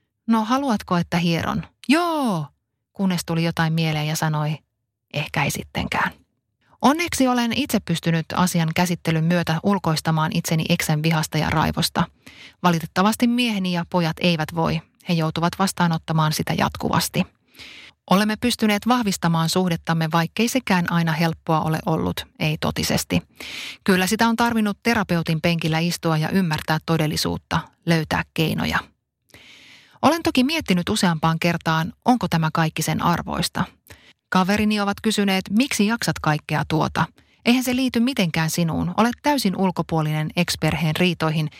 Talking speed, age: 130 wpm, 30-49